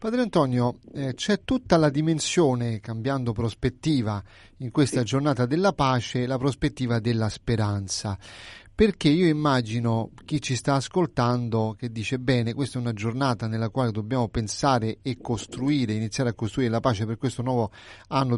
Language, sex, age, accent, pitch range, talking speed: Italian, male, 30-49, native, 110-135 Hz, 155 wpm